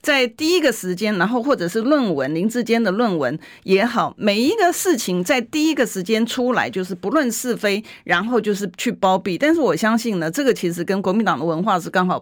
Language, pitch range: Chinese, 170-235 Hz